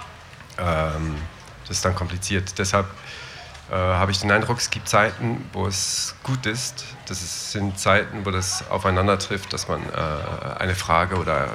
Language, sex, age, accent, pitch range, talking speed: German, male, 40-59, German, 85-100 Hz, 155 wpm